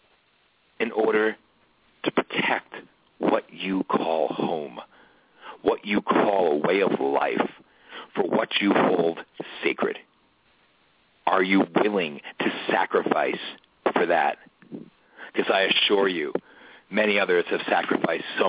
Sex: male